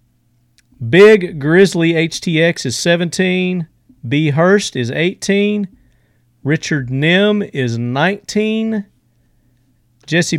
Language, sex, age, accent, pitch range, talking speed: English, male, 40-59, American, 120-165 Hz, 80 wpm